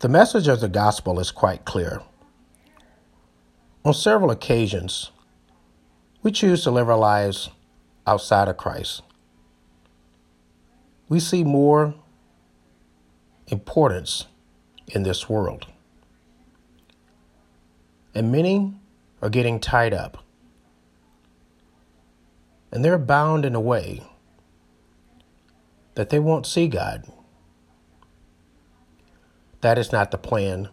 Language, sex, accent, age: English, male, American, 50-69